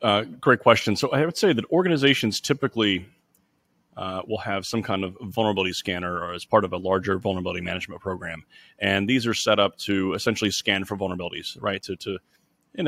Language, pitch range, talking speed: English, 95-110 Hz, 185 wpm